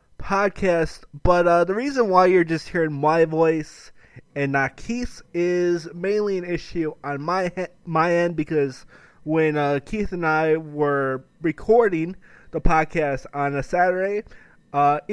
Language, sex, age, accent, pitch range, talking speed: English, male, 20-39, American, 145-175 Hz, 145 wpm